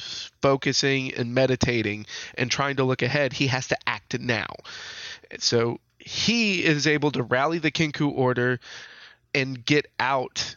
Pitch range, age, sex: 120-145 Hz, 20-39, male